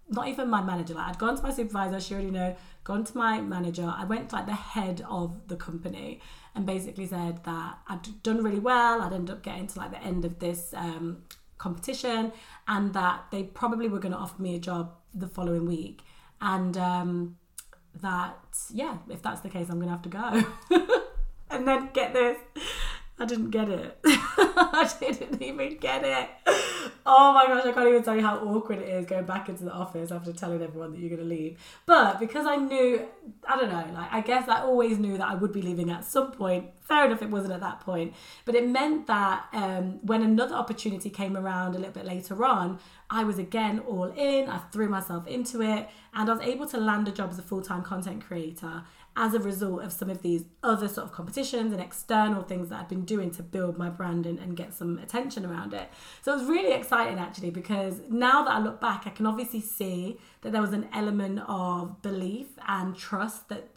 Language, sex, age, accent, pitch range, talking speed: English, female, 20-39, British, 180-230 Hz, 215 wpm